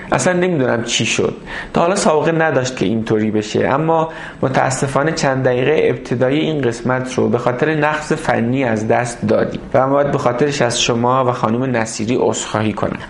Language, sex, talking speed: Persian, male, 165 wpm